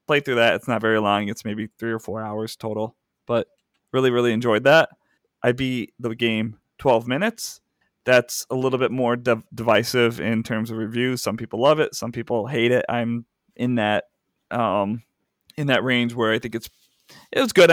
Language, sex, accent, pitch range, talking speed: English, male, American, 115-130 Hz, 195 wpm